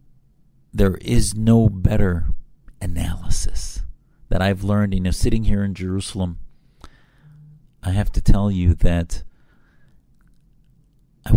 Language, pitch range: English, 90-110 Hz